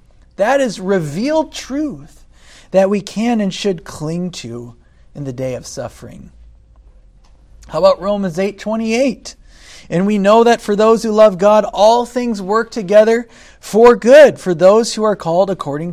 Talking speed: 160 wpm